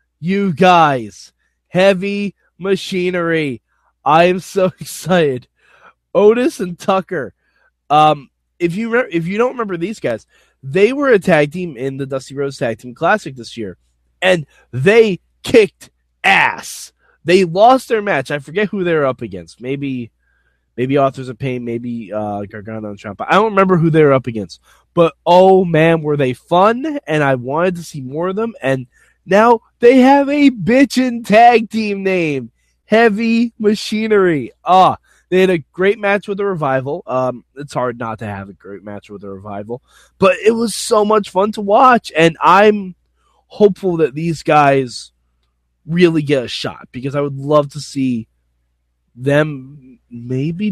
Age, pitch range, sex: 20-39, 130-205 Hz, male